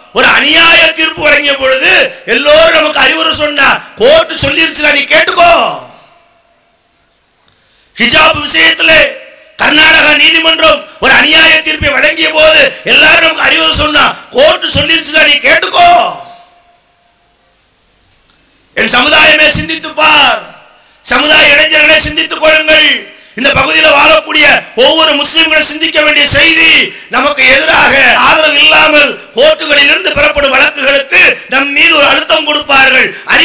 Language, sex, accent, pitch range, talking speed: English, male, Indian, 285-320 Hz, 80 wpm